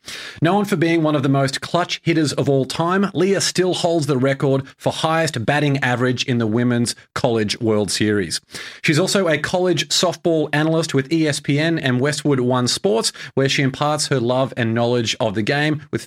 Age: 40-59